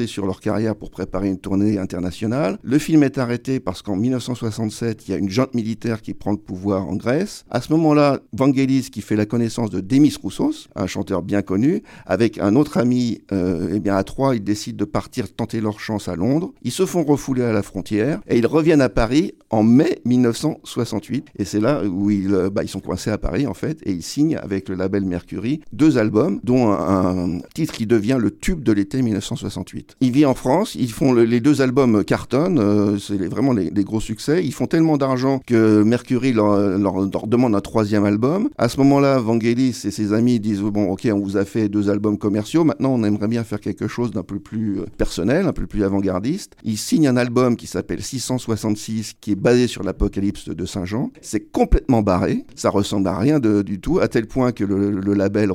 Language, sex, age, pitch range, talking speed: French, male, 60-79, 100-125 Hz, 215 wpm